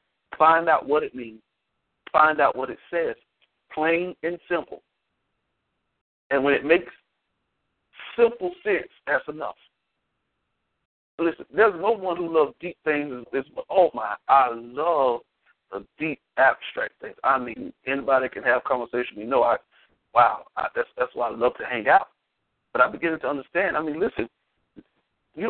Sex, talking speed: male, 165 wpm